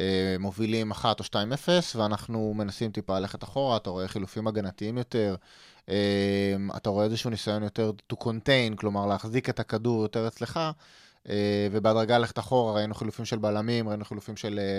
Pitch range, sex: 105-130 Hz, male